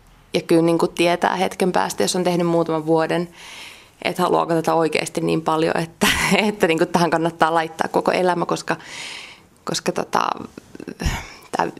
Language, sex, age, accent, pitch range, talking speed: Finnish, female, 20-39, native, 160-180 Hz, 145 wpm